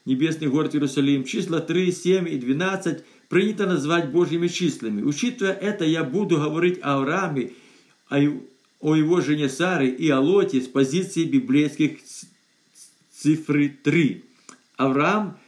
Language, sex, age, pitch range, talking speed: Russian, male, 50-69, 145-185 Hz, 120 wpm